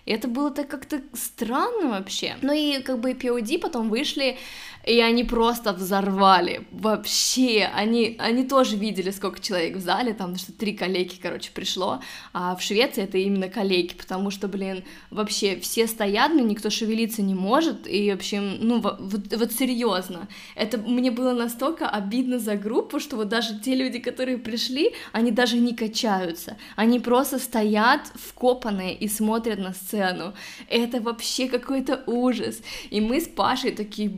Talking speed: 165 wpm